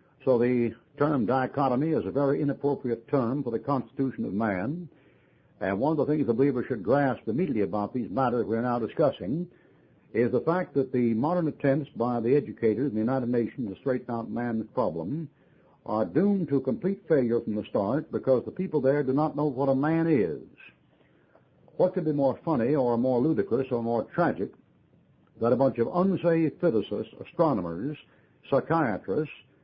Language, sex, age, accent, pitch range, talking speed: English, male, 60-79, American, 120-155 Hz, 175 wpm